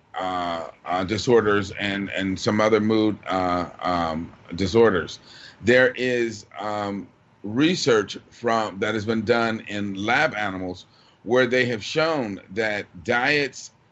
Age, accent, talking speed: 40-59, American, 125 wpm